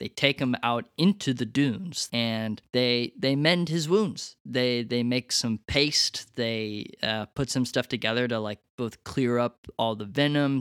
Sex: male